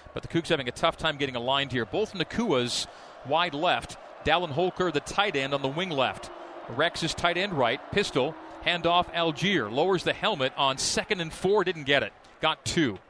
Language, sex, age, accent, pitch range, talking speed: English, male, 40-59, American, 165-260 Hz, 190 wpm